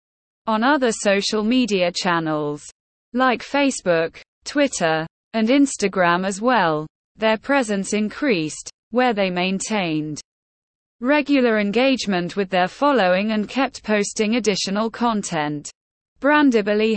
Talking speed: 105 wpm